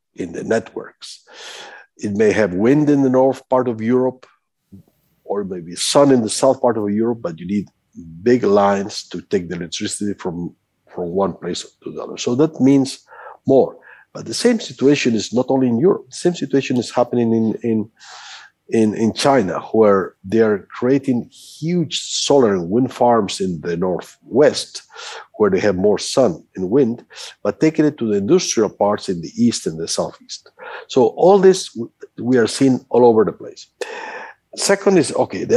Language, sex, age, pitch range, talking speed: English, male, 50-69, 110-155 Hz, 180 wpm